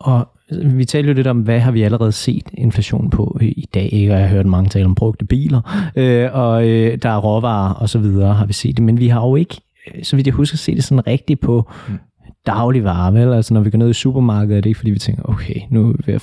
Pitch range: 110-140 Hz